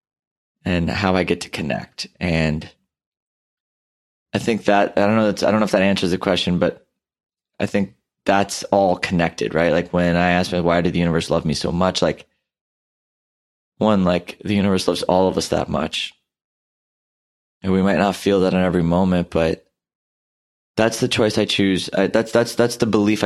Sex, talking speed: male, 190 wpm